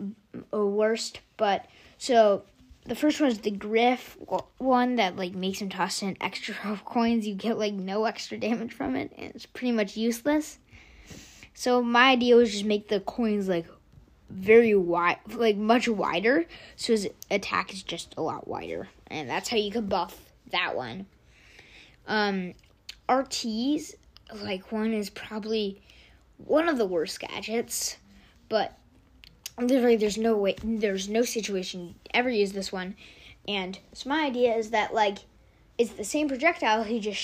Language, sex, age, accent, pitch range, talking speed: English, female, 20-39, American, 200-240 Hz, 160 wpm